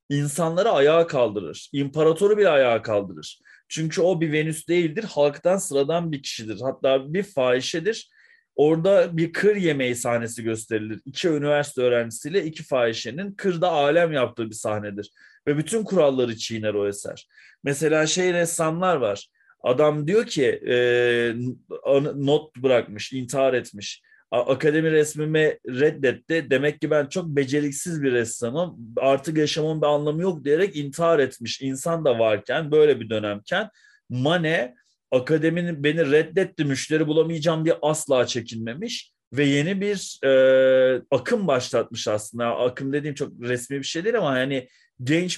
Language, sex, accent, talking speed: Turkish, male, native, 135 wpm